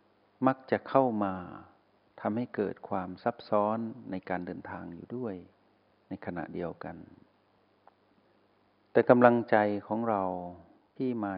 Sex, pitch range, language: male, 95-115 Hz, Thai